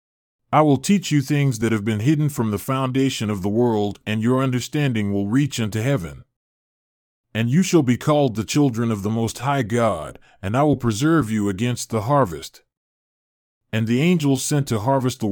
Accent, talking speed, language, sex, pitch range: American, 190 wpm, English, male, 105-140 Hz